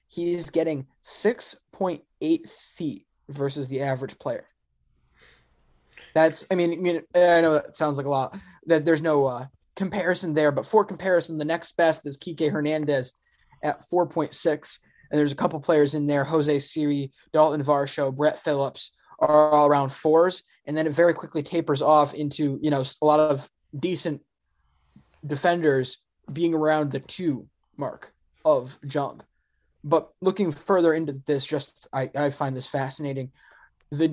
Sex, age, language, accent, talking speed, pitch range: male, 20-39, English, American, 155 wpm, 135-165 Hz